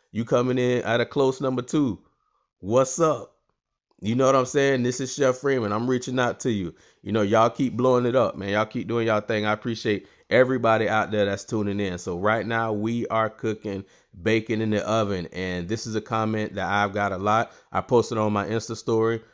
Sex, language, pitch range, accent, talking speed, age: male, English, 105-125 Hz, American, 220 wpm, 20-39